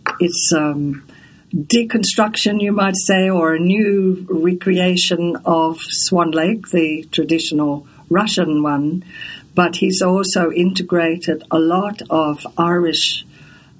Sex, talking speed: female, 110 wpm